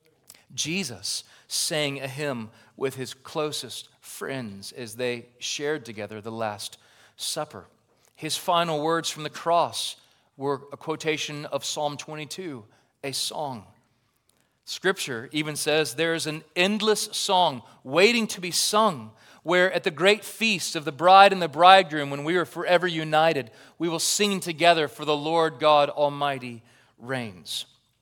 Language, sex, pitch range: English, male, 110-155 Hz